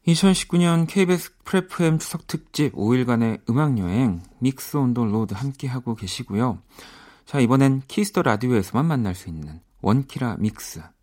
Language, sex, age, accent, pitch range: Korean, male, 40-59, native, 100-135 Hz